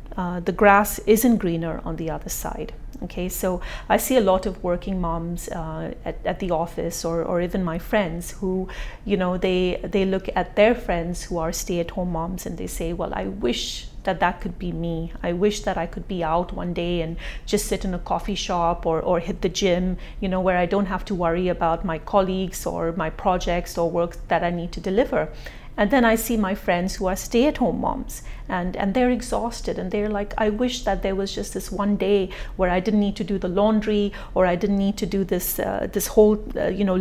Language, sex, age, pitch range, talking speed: English, female, 30-49, 175-210 Hz, 230 wpm